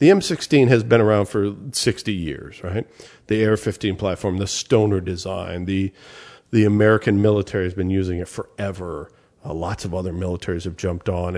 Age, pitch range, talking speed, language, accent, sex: 40-59, 95-120 Hz, 170 wpm, English, American, male